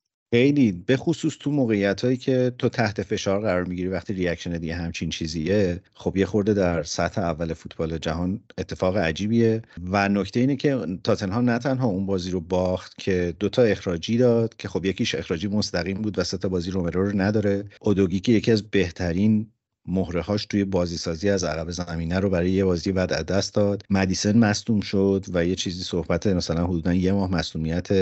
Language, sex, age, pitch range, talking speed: Persian, male, 50-69, 90-110 Hz, 185 wpm